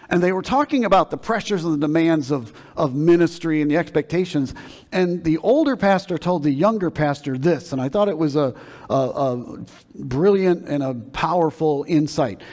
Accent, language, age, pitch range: American, English, 50-69, 135-180 Hz